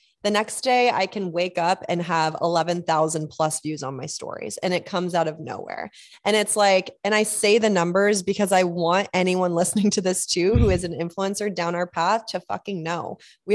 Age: 20-39